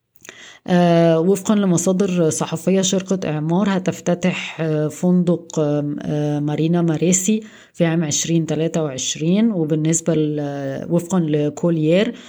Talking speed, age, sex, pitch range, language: 75 wpm, 20-39, female, 155-180 Hz, Arabic